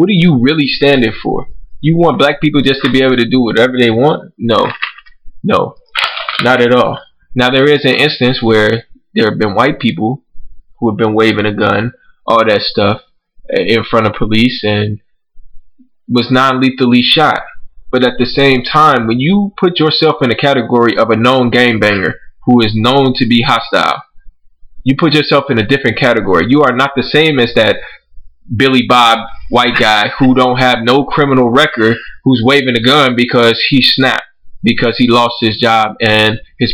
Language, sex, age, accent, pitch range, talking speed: English, male, 20-39, American, 115-135 Hz, 185 wpm